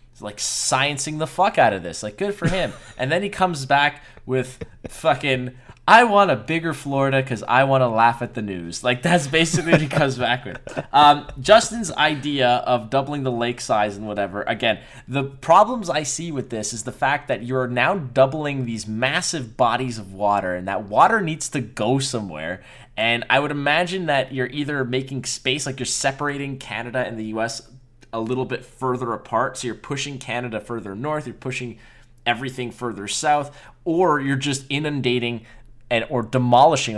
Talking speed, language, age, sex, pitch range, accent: 185 wpm, English, 20-39, male, 120-145 Hz, American